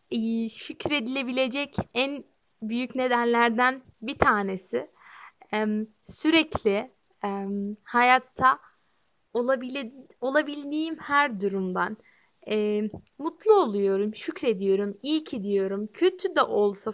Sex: female